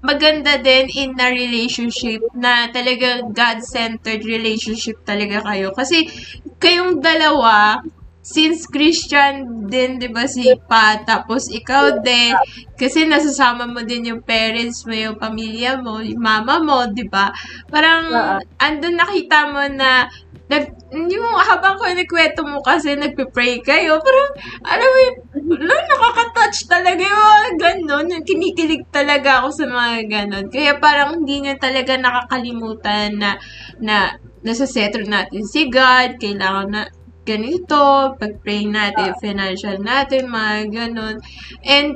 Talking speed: 130 wpm